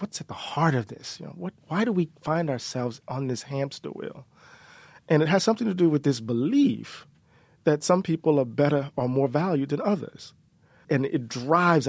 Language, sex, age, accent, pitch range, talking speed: English, male, 40-59, American, 135-175 Hz, 200 wpm